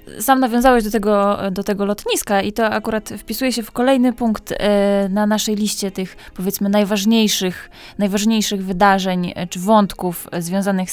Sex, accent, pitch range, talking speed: female, native, 180-215 Hz, 135 wpm